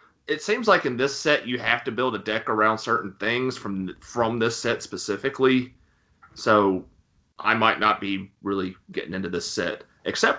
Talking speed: 180 wpm